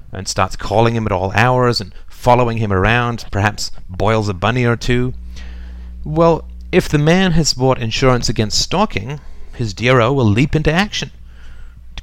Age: 30-49